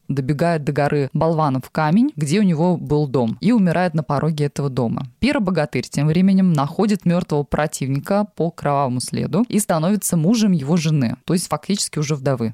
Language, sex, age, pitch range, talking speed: Russian, female, 20-39, 150-200 Hz, 165 wpm